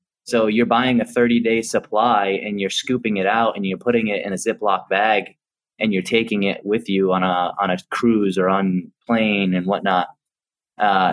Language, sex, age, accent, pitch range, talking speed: English, male, 20-39, American, 100-125 Hz, 195 wpm